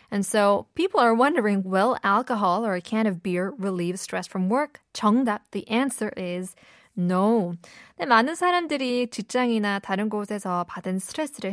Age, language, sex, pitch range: 20-39, Korean, female, 195-275 Hz